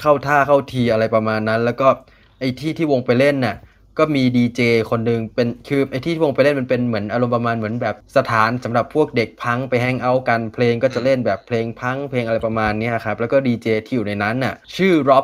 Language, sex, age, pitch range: Thai, male, 20-39, 110-130 Hz